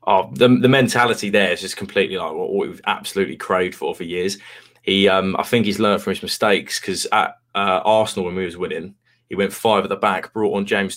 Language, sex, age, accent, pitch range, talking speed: English, male, 20-39, British, 100-125 Hz, 230 wpm